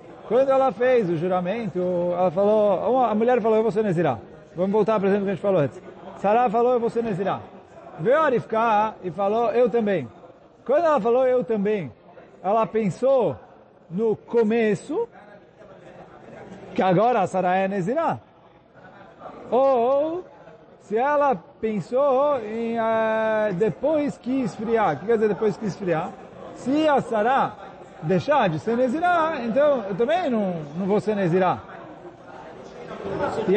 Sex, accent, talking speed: male, Brazilian, 145 wpm